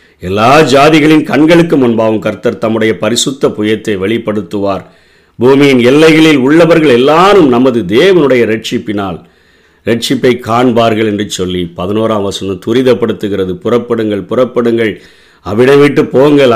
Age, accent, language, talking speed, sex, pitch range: 50-69, native, Tamil, 100 wpm, male, 110-140 Hz